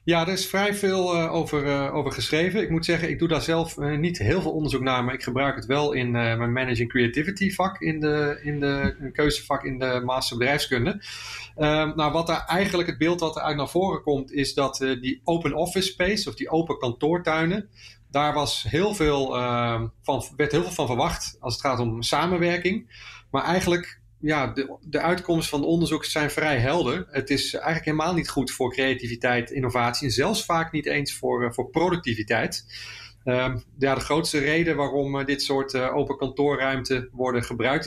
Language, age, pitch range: Dutch, 30-49, 125-160 Hz